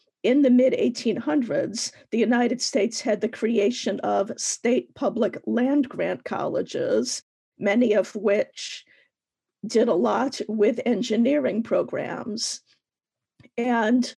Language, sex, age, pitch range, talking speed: English, female, 50-69, 225-275 Hz, 110 wpm